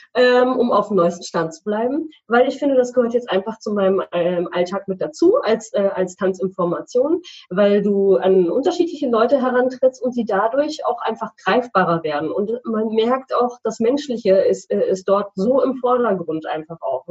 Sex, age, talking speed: female, 20-39, 170 wpm